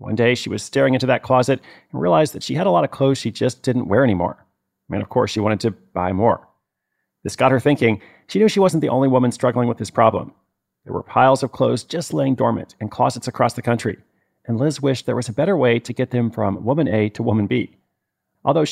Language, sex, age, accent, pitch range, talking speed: English, male, 40-59, American, 110-140 Hz, 245 wpm